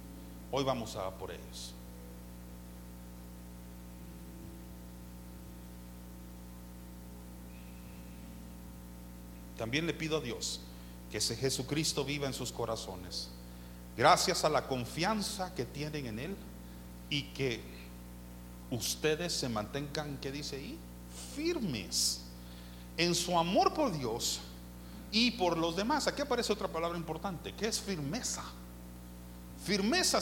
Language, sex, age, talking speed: Spanish, male, 50-69, 105 wpm